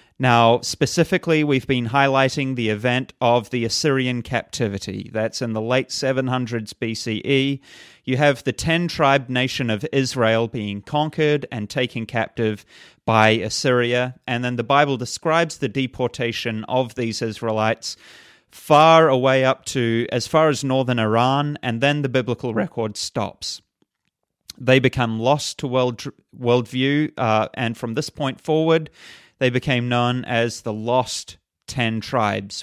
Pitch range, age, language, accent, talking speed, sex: 115-140 Hz, 30-49, English, Australian, 140 wpm, male